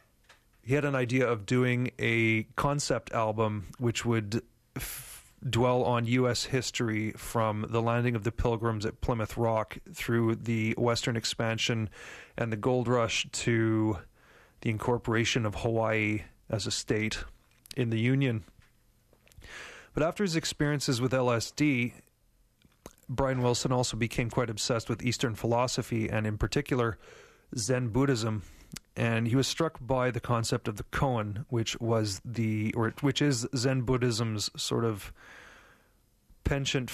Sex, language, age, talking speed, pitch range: male, English, 30-49, 135 wpm, 110-130 Hz